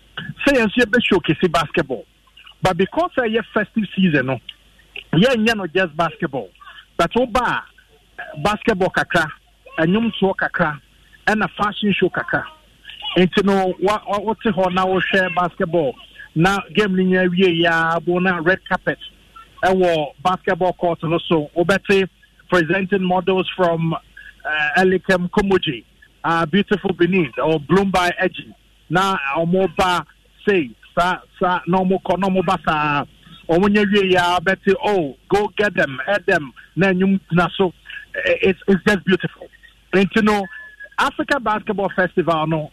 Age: 50-69